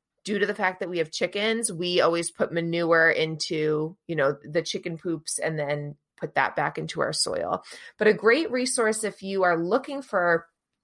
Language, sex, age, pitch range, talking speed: English, female, 20-39, 165-215 Hz, 195 wpm